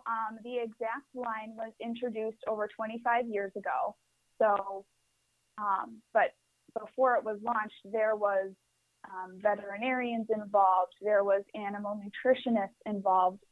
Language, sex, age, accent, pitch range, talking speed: English, female, 20-39, American, 205-235 Hz, 120 wpm